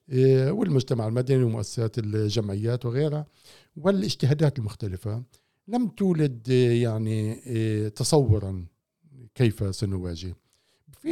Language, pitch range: Arabic, 110-140 Hz